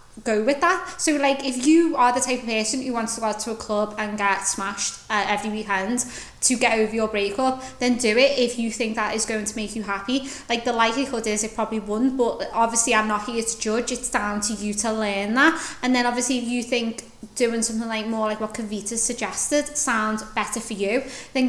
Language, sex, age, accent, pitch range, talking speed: English, female, 20-39, British, 220-255 Hz, 230 wpm